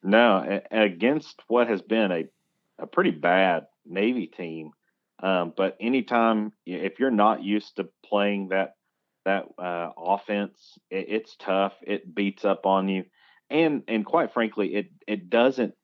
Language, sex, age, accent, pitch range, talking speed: English, male, 40-59, American, 95-115 Hz, 150 wpm